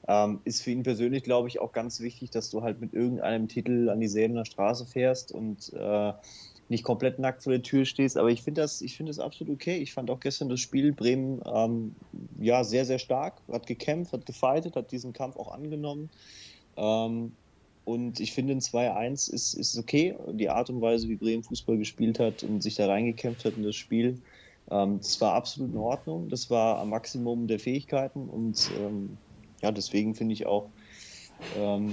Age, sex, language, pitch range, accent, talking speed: 30-49, male, German, 105-125 Hz, German, 195 wpm